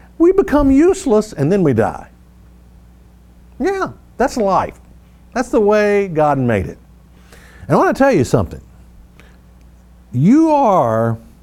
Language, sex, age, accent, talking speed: English, male, 50-69, American, 130 wpm